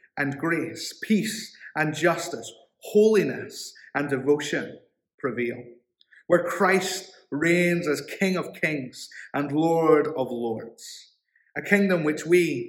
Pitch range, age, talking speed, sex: 150-190 Hz, 30-49, 115 wpm, male